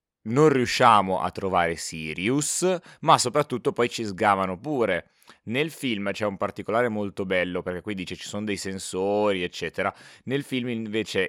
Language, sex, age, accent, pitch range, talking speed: Italian, male, 20-39, native, 90-115 Hz, 155 wpm